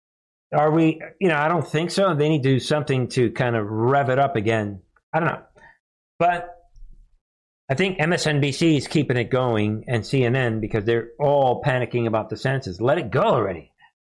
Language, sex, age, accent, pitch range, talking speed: English, male, 50-69, American, 115-165 Hz, 190 wpm